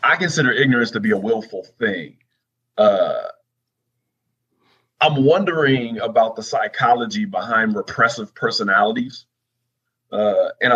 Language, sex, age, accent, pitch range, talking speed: English, male, 30-49, American, 110-135 Hz, 105 wpm